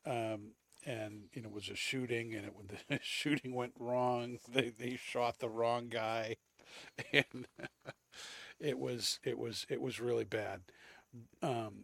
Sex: male